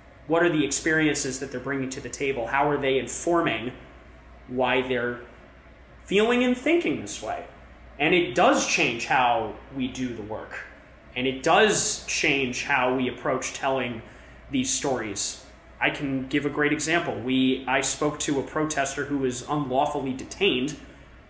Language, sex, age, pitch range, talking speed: English, male, 20-39, 120-145 Hz, 160 wpm